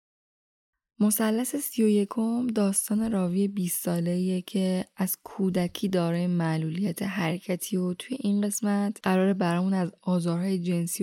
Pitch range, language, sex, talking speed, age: 180-210 Hz, Persian, female, 115 wpm, 10-29